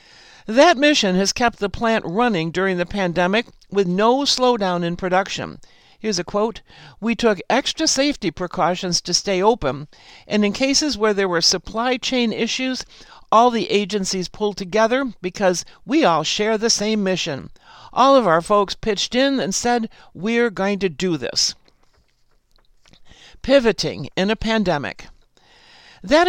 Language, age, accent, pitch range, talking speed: English, 60-79, American, 180-240 Hz, 150 wpm